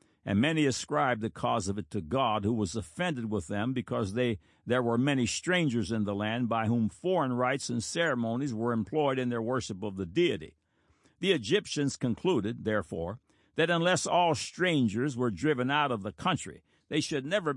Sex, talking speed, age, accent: male, 185 wpm, 60-79, American